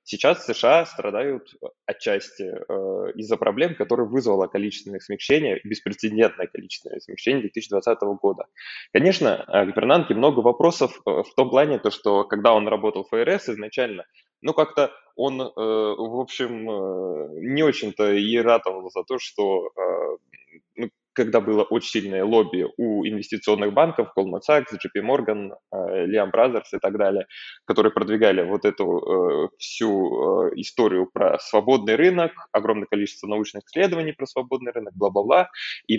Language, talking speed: Russian, 135 wpm